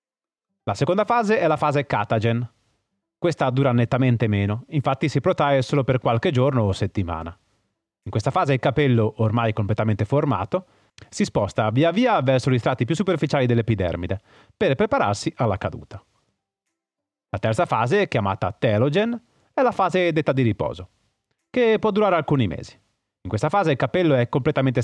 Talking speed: 155 wpm